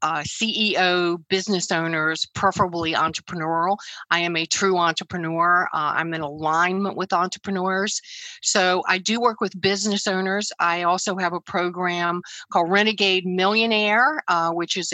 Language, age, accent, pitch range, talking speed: English, 50-69, American, 175-205 Hz, 140 wpm